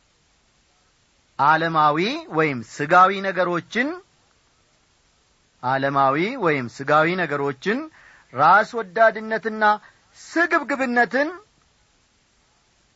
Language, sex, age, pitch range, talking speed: Amharic, male, 40-59, 155-225 Hz, 50 wpm